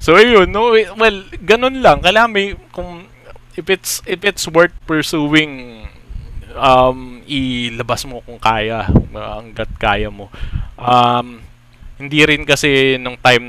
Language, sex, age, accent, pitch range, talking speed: Filipino, male, 20-39, native, 110-150 Hz, 125 wpm